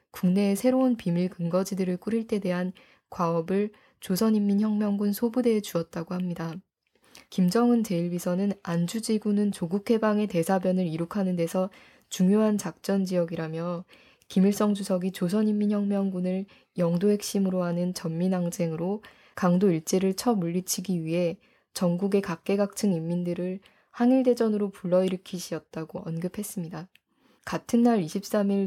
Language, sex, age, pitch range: Korean, female, 20-39, 175-220 Hz